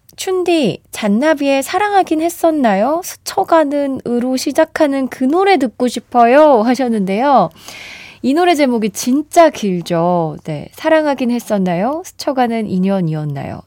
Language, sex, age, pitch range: Korean, female, 20-39, 190-285 Hz